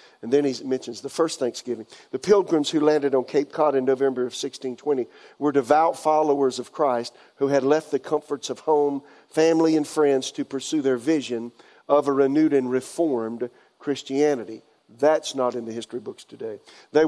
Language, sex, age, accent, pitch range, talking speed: English, male, 50-69, American, 130-155 Hz, 180 wpm